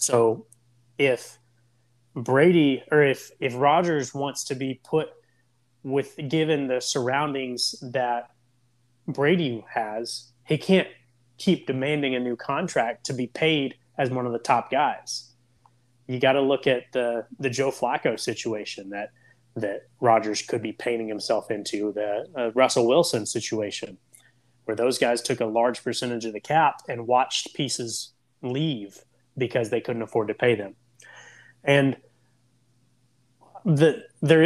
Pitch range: 120-140 Hz